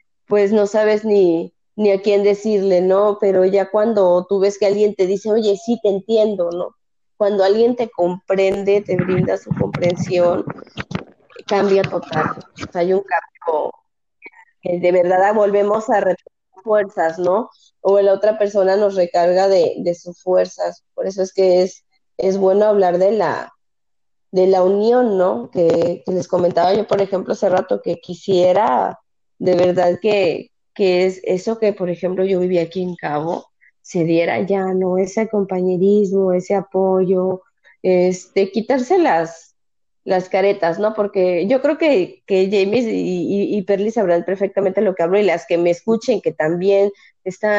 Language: Spanish